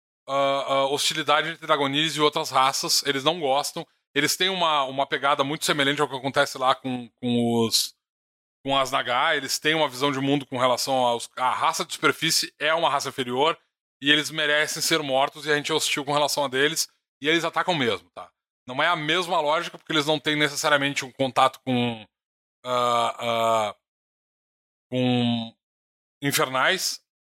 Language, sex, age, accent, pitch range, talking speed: Portuguese, male, 20-39, Brazilian, 125-160 Hz, 180 wpm